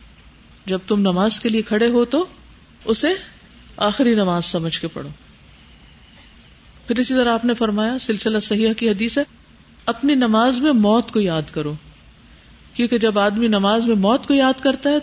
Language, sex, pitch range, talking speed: Urdu, female, 170-240 Hz, 170 wpm